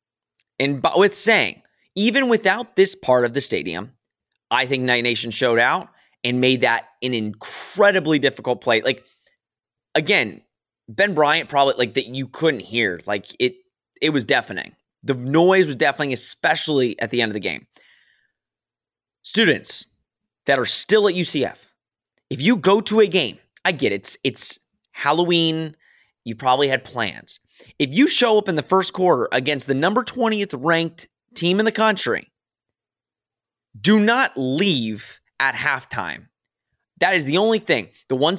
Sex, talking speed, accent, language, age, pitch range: male, 155 wpm, American, English, 20-39, 125-190 Hz